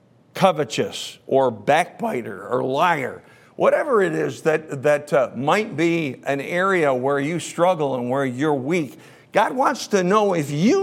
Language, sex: English, male